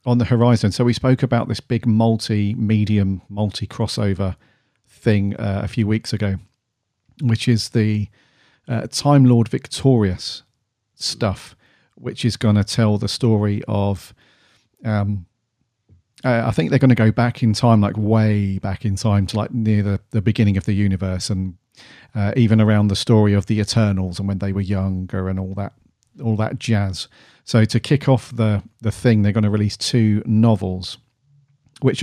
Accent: British